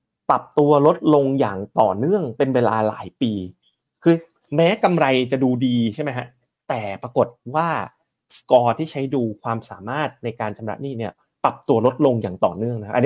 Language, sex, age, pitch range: Thai, male, 30-49, 115-150 Hz